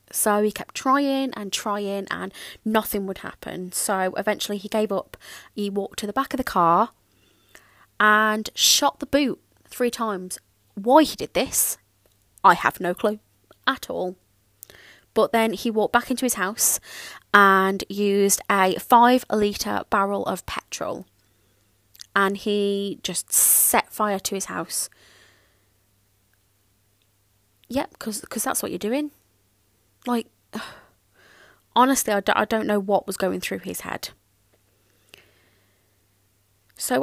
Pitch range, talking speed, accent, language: 175-235 Hz, 130 wpm, British, English